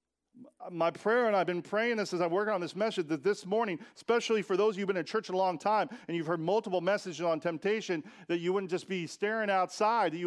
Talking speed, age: 255 wpm, 40-59